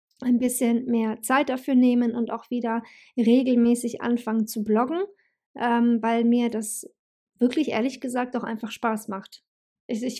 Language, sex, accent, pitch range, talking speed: German, female, German, 225-255 Hz, 145 wpm